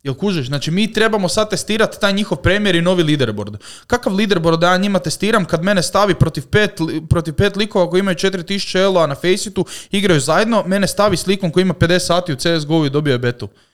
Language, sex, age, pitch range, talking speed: Croatian, male, 20-39, 135-185 Hz, 210 wpm